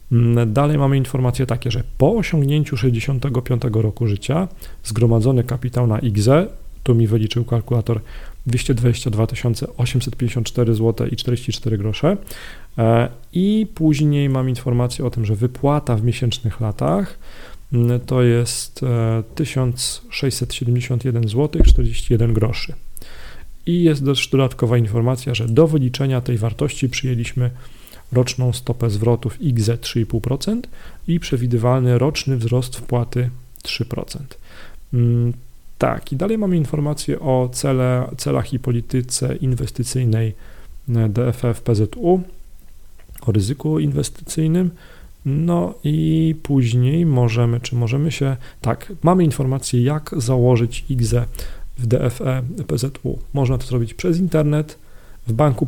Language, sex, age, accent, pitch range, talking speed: Polish, male, 40-59, native, 120-140 Hz, 110 wpm